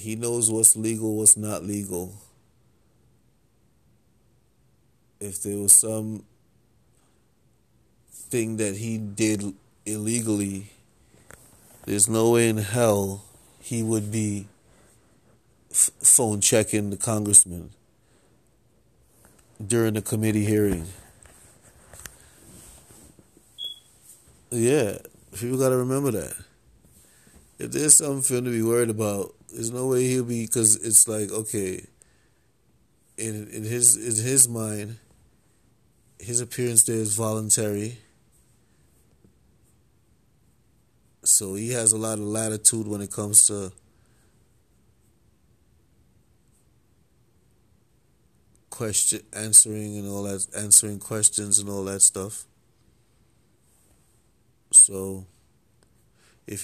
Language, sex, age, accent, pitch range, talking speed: English, male, 30-49, American, 100-115 Hz, 95 wpm